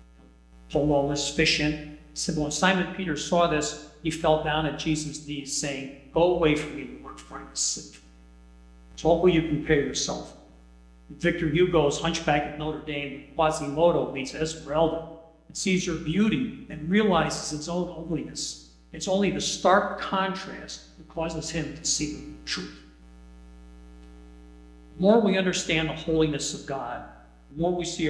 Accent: American